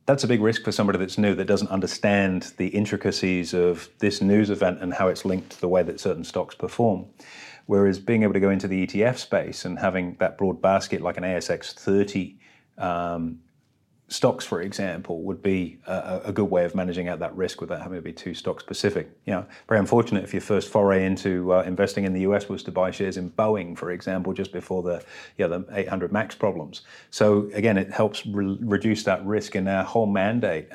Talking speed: 210 wpm